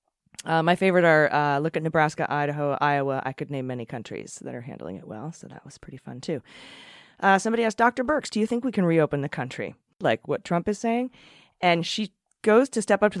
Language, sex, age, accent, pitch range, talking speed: English, female, 30-49, American, 145-185 Hz, 230 wpm